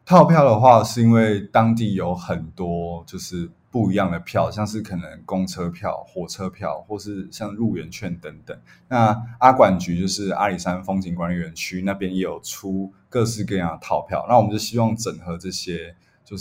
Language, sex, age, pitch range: Chinese, male, 20-39, 90-110 Hz